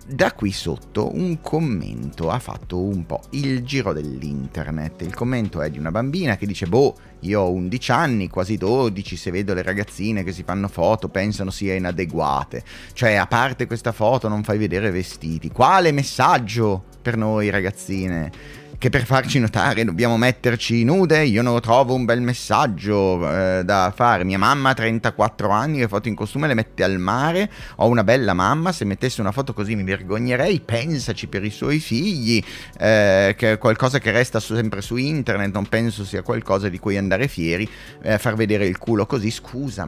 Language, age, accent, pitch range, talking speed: Italian, 30-49, native, 95-120 Hz, 185 wpm